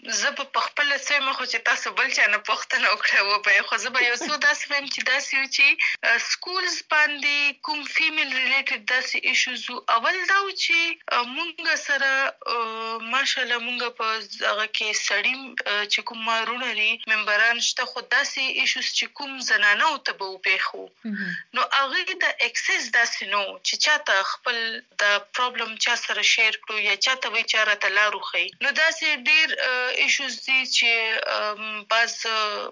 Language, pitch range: Urdu, 225-285 Hz